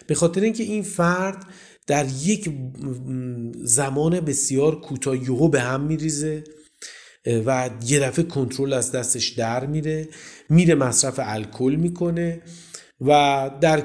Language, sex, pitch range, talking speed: Persian, male, 125-205 Hz, 115 wpm